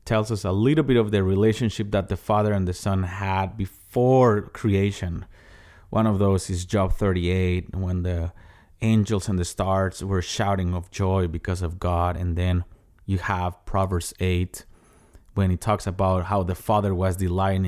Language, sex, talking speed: English, male, 175 wpm